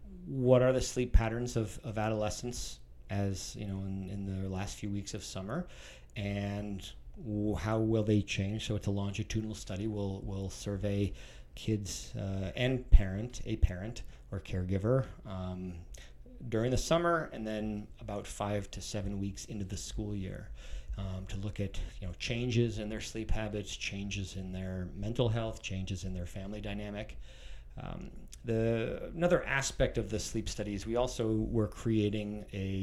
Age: 40-59